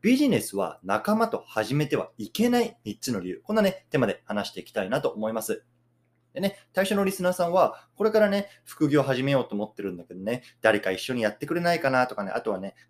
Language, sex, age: Japanese, male, 20-39